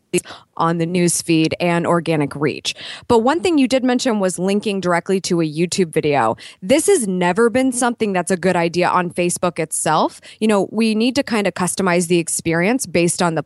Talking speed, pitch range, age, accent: 195 wpm, 170-225 Hz, 20-39, American